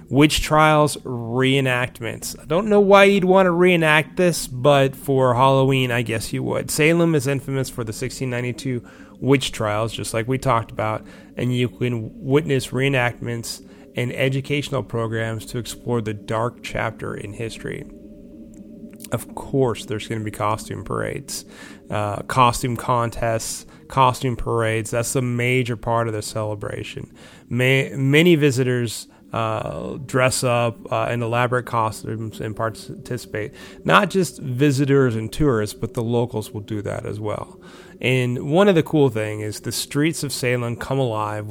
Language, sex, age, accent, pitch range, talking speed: English, male, 30-49, American, 110-135 Hz, 150 wpm